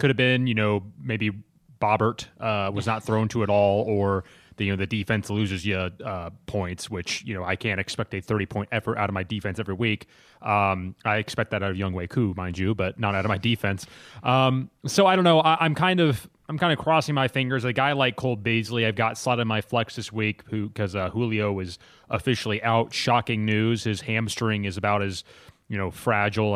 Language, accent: English, American